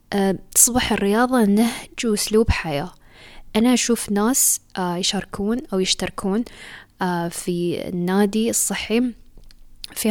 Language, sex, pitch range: Arabic, female, 185-220 Hz